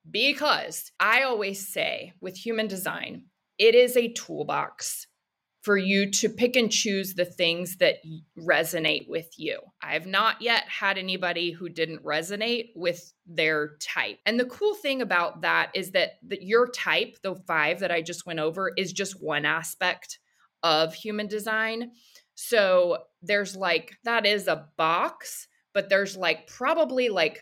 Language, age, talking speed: English, 20-39, 155 wpm